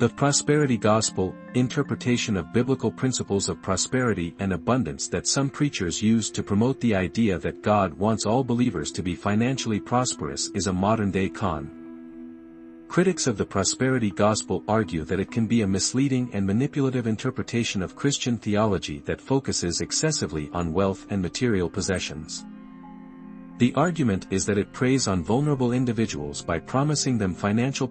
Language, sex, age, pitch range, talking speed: English, male, 50-69, 95-125 Hz, 155 wpm